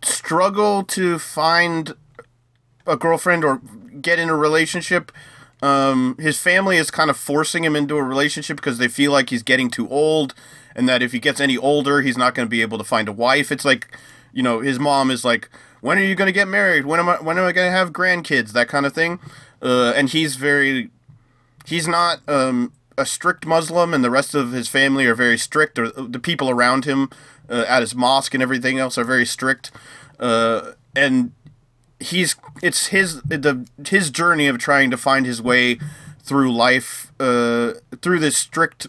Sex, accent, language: male, American, English